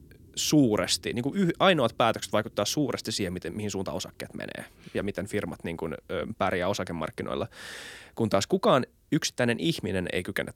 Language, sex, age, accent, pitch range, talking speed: Finnish, male, 20-39, native, 95-120 Hz, 155 wpm